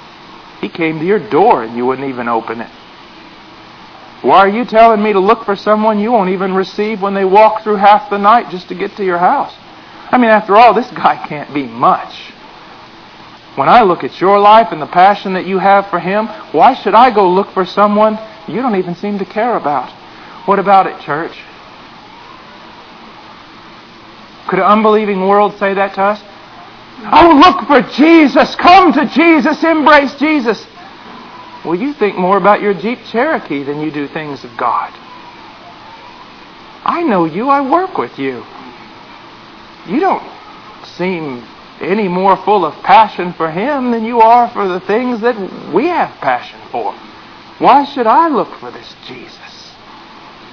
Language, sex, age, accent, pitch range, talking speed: English, male, 50-69, American, 185-230 Hz, 170 wpm